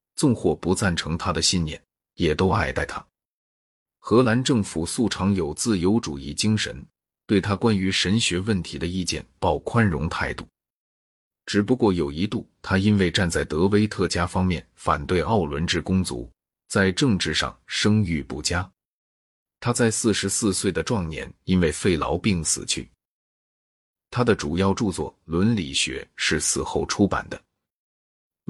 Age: 30-49